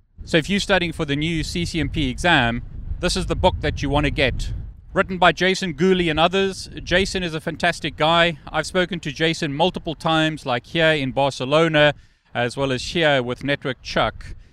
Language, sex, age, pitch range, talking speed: English, male, 30-49, 125-170 Hz, 190 wpm